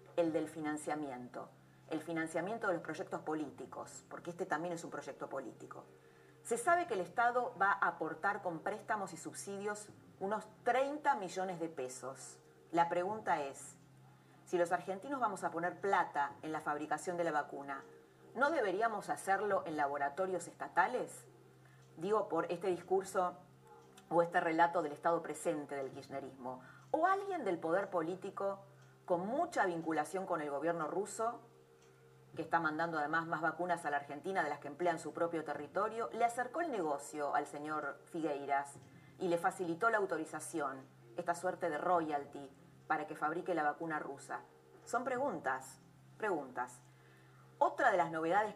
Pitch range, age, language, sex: 140-185 Hz, 30-49, Spanish, female